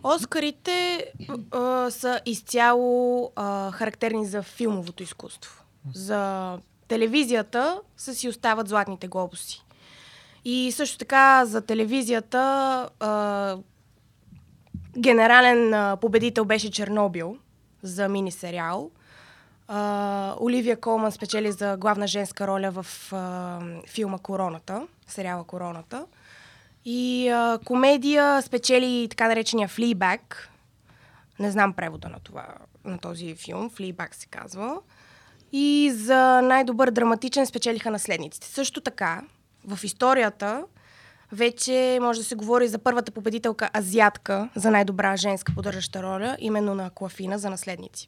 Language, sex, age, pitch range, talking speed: Bulgarian, female, 20-39, 195-245 Hz, 115 wpm